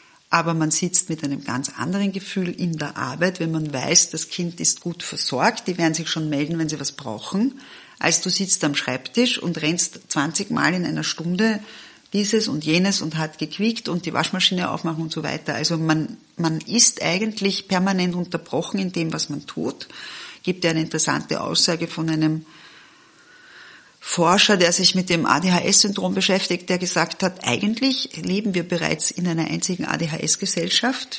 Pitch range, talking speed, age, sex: 160-195 Hz, 175 wpm, 40-59, female